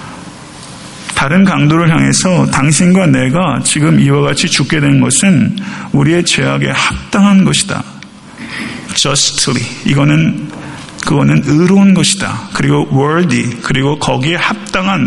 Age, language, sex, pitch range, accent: 40-59, Korean, male, 130-165 Hz, native